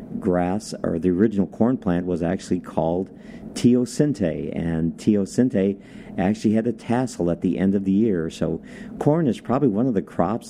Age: 50-69